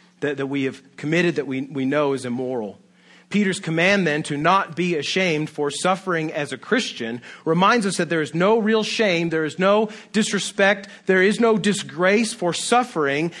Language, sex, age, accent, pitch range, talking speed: English, male, 40-59, American, 140-205 Hz, 175 wpm